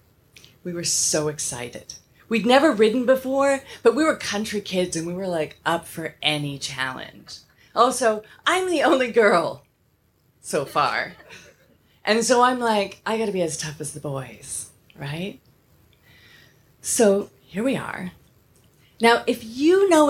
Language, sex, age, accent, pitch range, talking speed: English, female, 30-49, American, 170-280 Hz, 145 wpm